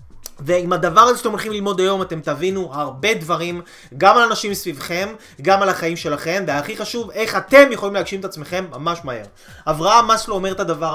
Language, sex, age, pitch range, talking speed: Hebrew, male, 20-39, 160-215 Hz, 185 wpm